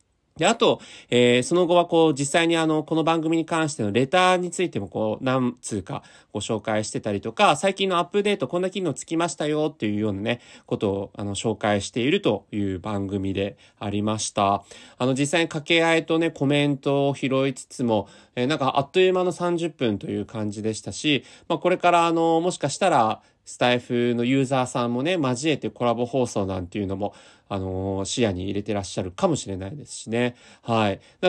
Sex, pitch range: male, 110-160 Hz